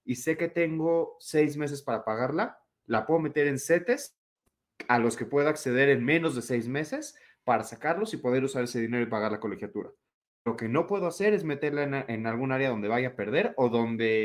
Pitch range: 115-155 Hz